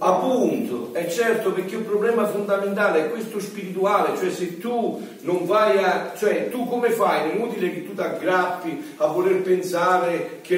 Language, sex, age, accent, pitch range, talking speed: Italian, male, 40-59, native, 180-220 Hz, 170 wpm